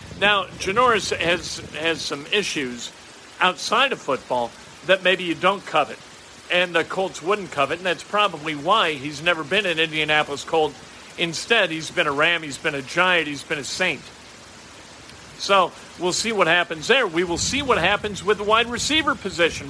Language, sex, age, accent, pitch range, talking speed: English, male, 50-69, American, 175-235 Hz, 175 wpm